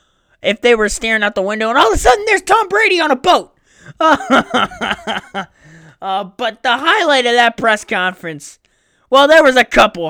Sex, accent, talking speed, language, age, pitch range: male, American, 185 wpm, English, 20-39, 225-320 Hz